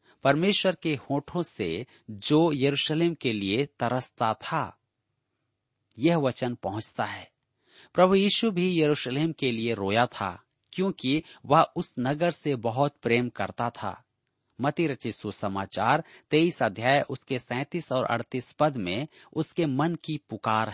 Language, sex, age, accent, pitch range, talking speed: Hindi, male, 40-59, native, 120-160 Hz, 135 wpm